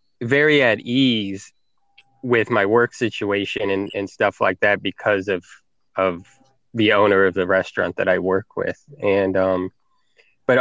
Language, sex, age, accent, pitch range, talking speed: English, male, 20-39, American, 105-130 Hz, 155 wpm